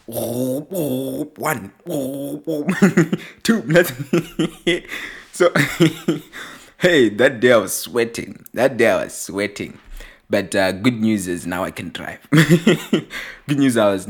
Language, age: English, 20-39